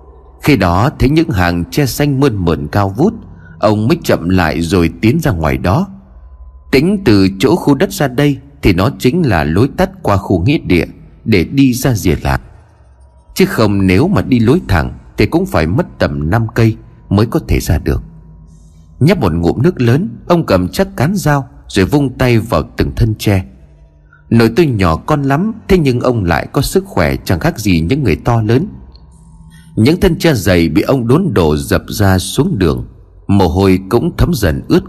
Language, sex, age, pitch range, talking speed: Vietnamese, male, 30-49, 85-140 Hz, 200 wpm